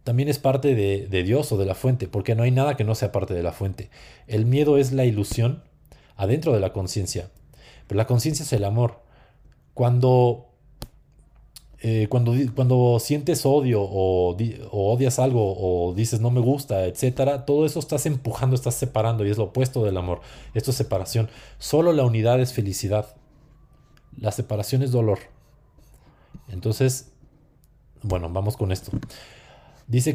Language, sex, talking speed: Spanish, male, 160 wpm